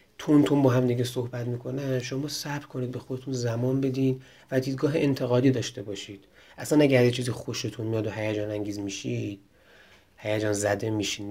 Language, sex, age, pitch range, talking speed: Persian, male, 30-49, 105-125 Hz, 165 wpm